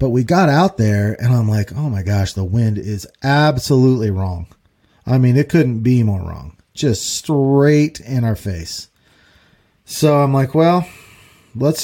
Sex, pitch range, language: male, 105-145 Hz, English